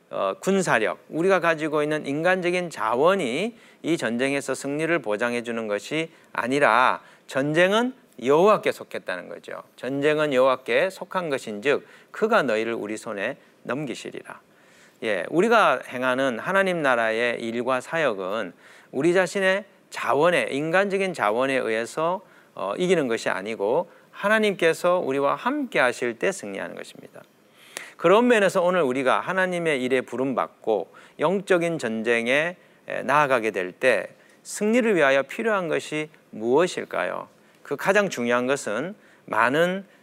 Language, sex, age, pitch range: Korean, male, 40-59, 130-190 Hz